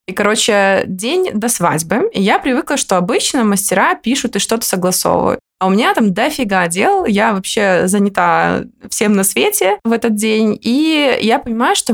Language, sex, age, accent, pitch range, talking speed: Russian, female, 20-39, native, 185-235 Hz, 170 wpm